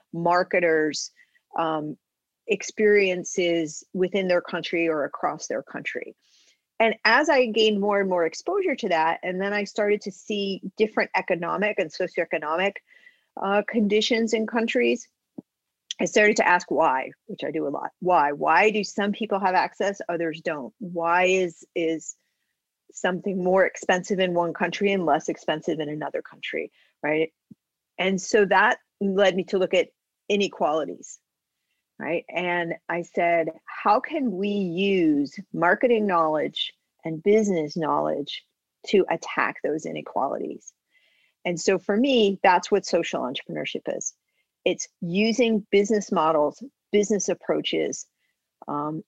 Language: English